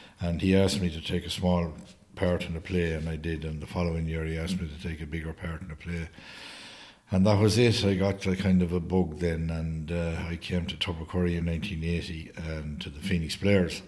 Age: 60-79